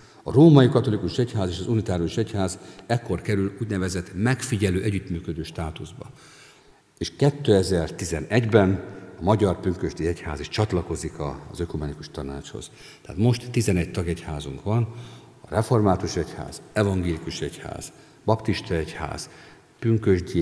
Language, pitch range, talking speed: Hungarian, 85-110 Hz, 115 wpm